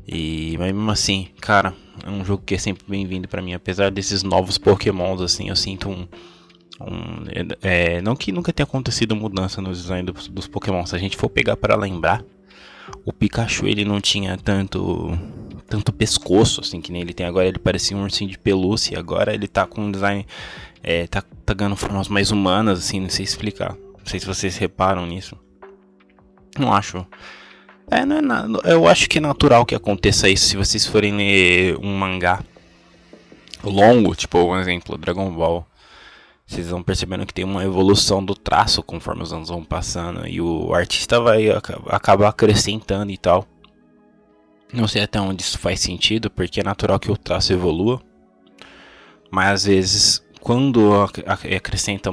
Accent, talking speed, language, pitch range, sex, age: Brazilian, 175 wpm, Portuguese, 90-105 Hz, male, 20-39